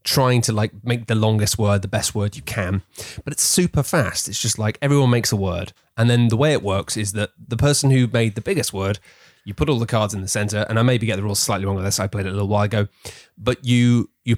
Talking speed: 275 wpm